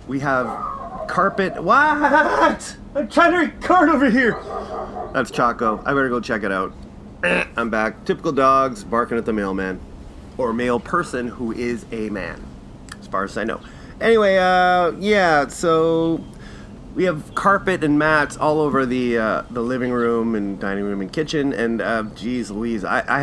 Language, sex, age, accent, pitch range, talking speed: English, male, 30-49, American, 110-150 Hz, 170 wpm